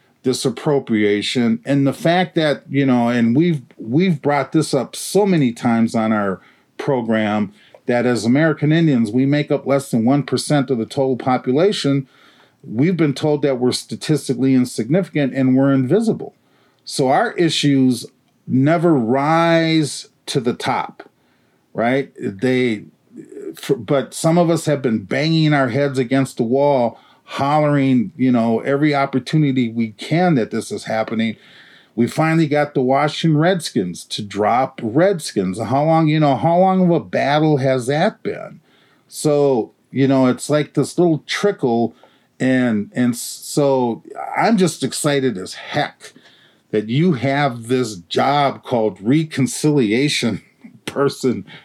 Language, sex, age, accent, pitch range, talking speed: English, male, 40-59, American, 125-155 Hz, 140 wpm